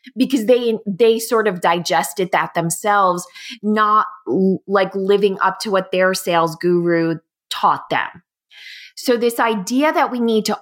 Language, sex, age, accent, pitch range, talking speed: English, female, 20-39, American, 175-220 Hz, 155 wpm